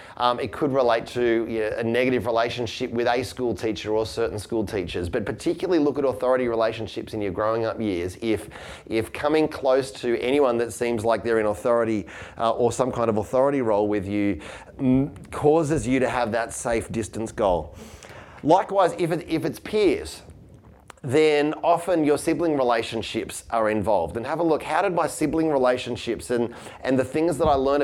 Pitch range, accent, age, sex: 110-145 Hz, Australian, 30-49, male